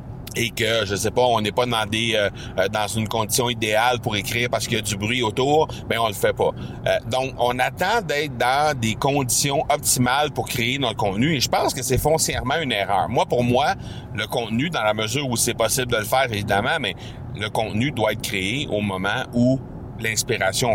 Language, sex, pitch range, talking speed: French, male, 110-130 Hz, 215 wpm